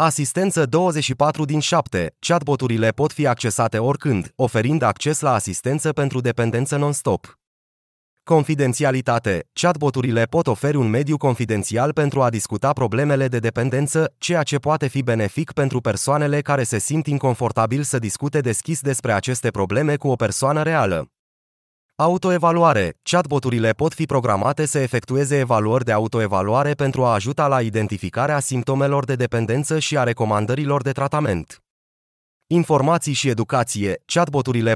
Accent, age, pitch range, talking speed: native, 20-39, 115-150 Hz, 135 wpm